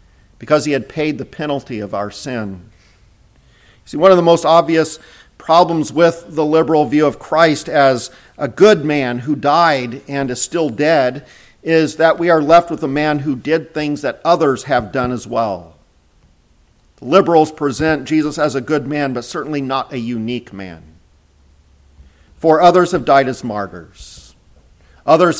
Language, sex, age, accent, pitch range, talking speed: English, male, 50-69, American, 120-150 Hz, 165 wpm